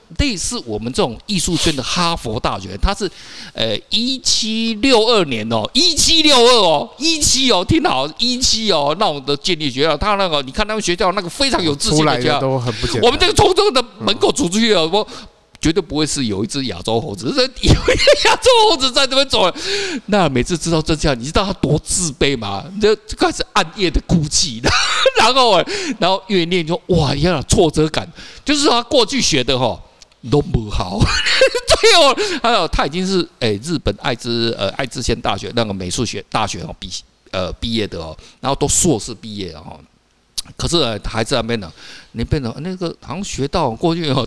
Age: 50-69